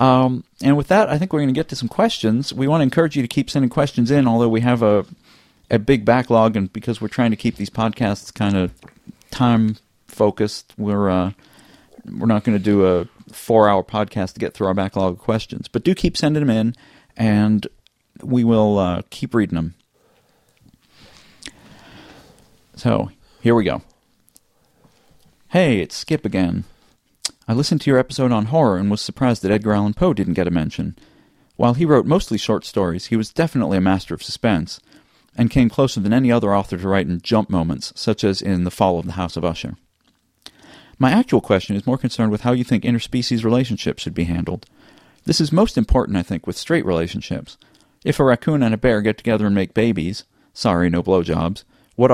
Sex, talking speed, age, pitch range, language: male, 195 wpm, 40-59, 100-130 Hz, English